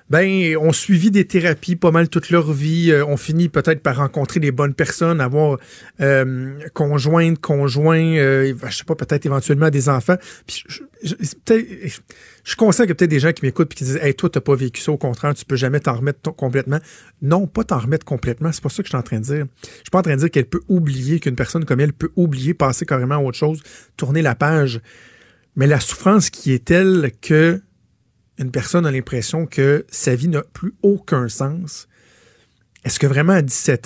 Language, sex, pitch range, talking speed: French, male, 135-165 Hz, 230 wpm